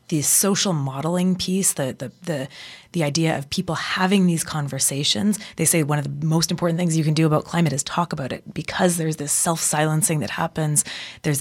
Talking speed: 200 wpm